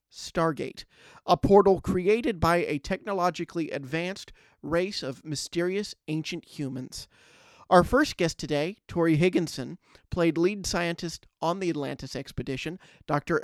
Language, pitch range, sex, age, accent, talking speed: English, 150-185 Hz, male, 40-59, American, 120 wpm